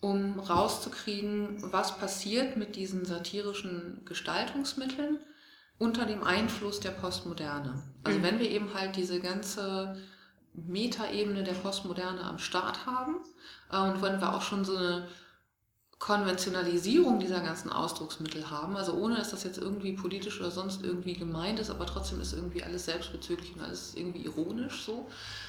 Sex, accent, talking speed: female, German, 145 wpm